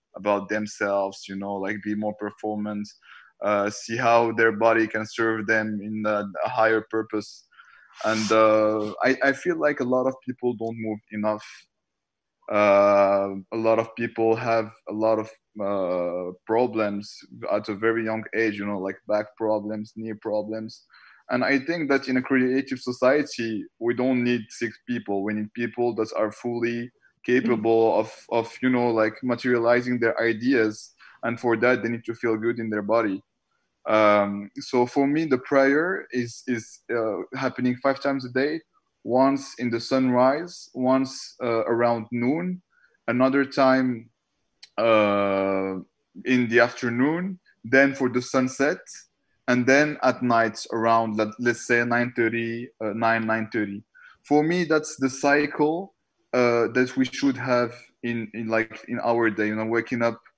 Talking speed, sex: 160 wpm, male